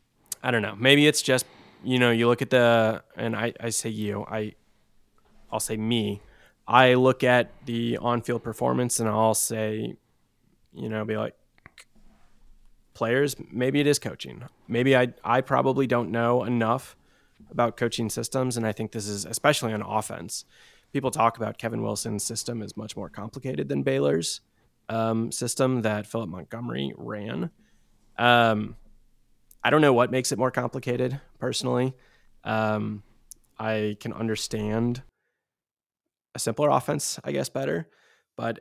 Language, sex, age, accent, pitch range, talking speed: English, male, 20-39, American, 110-130 Hz, 150 wpm